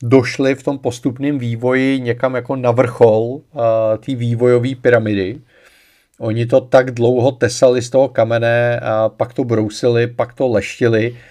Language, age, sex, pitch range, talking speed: Czech, 40-59, male, 110-125 Hz, 145 wpm